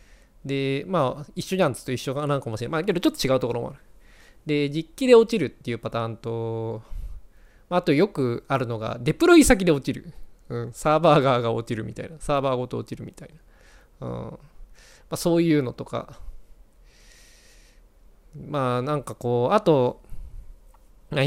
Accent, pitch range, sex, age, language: native, 115-150 Hz, male, 20-39, Japanese